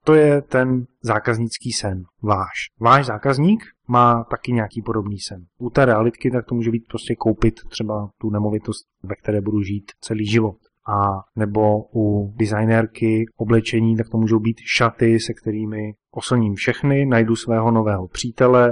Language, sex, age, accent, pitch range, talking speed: Czech, male, 30-49, native, 105-125 Hz, 155 wpm